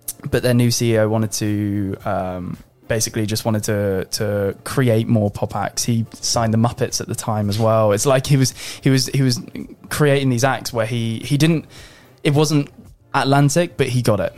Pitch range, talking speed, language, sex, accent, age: 110-130 Hz, 195 wpm, English, male, British, 20-39